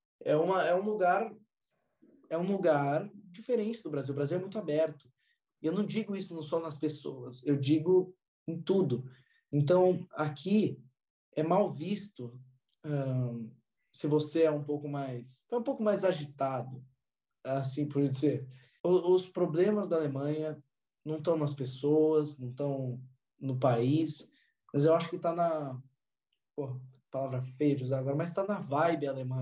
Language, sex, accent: Portuguese, male, Brazilian